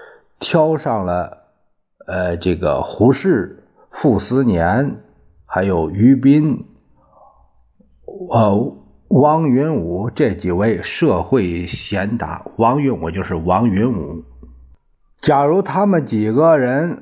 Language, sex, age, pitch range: Chinese, male, 50-69, 95-140 Hz